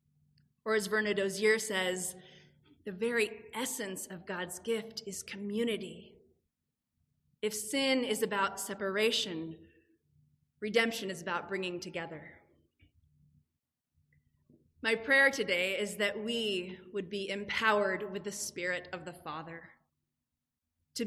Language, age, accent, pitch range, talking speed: English, 30-49, American, 175-225 Hz, 110 wpm